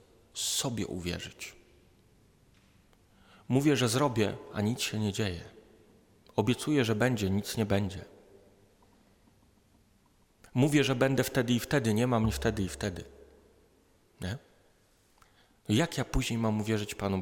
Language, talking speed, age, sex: Polish, 115 wpm, 40-59, male